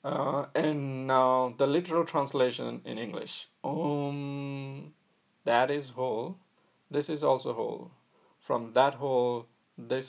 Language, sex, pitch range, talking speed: English, male, 110-135 Hz, 120 wpm